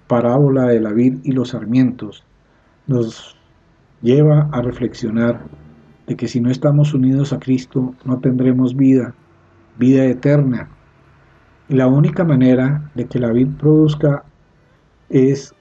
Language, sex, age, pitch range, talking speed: Spanish, male, 50-69, 120-150 Hz, 130 wpm